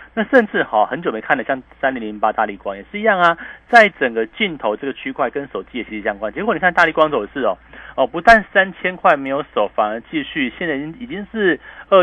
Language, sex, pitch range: Chinese, male, 115-195 Hz